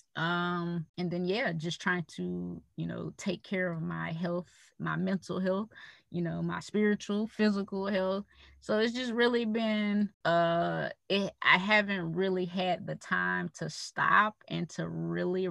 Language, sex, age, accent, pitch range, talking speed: English, female, 20-39, American, 165-210 Hz, 160 wpm